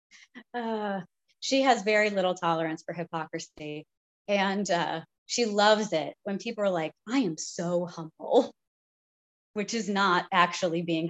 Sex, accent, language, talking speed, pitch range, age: female, American, English, 140 wpm, 170-220 Hz, 30-49